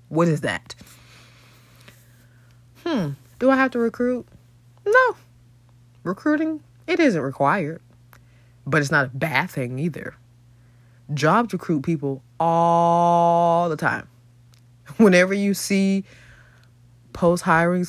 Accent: American